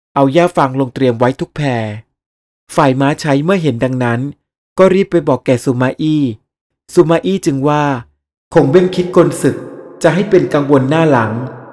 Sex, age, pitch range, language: male, 30-49, 130-165 Hz, Thai